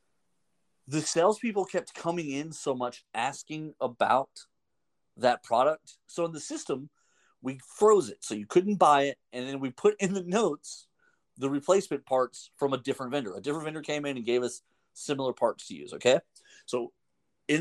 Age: 40-59